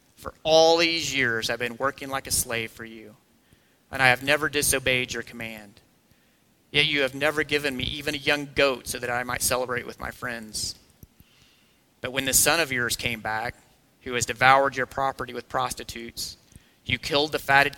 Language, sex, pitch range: English, male, 115-140 Hz